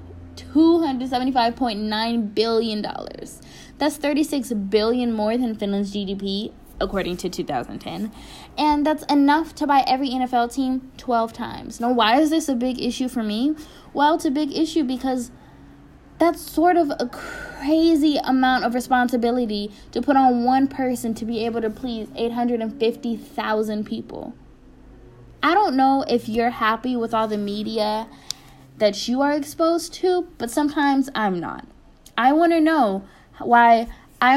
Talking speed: 140 wpm